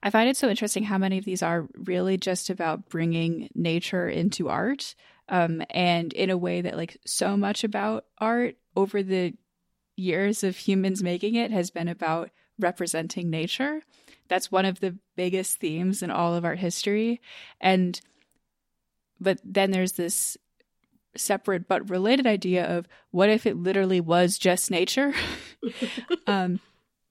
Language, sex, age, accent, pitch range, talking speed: English, female, 20-39, American, 170-200 Hz, 155 wpm